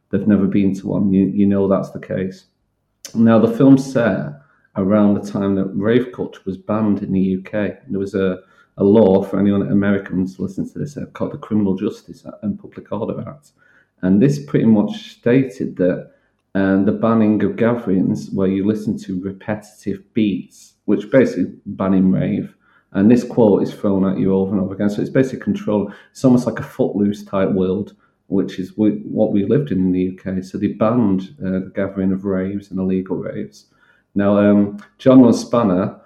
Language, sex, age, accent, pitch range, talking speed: English, male, 40-59, British, 95-110 Hz, 190 wpm